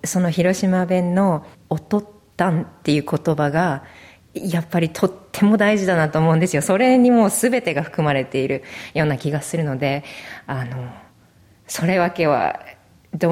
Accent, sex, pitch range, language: native, female, 150-185 Hz, Japanese